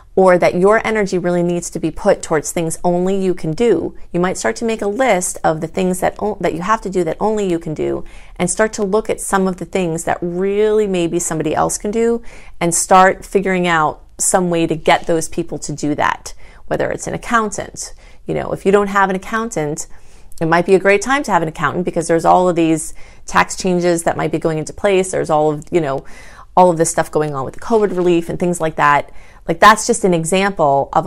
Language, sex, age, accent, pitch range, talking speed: English, female, 30-49, American, 165-200 Hz, 245 wpm